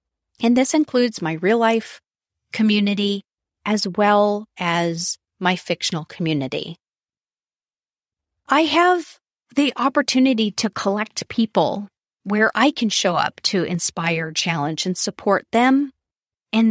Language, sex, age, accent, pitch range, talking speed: English, female, 30-49, American, 170-230 Hz, 115 wpm